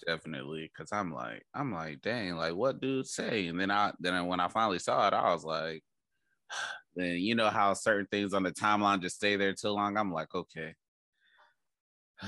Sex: male